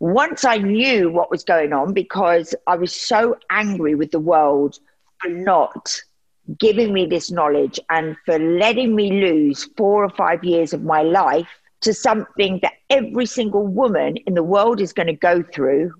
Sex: female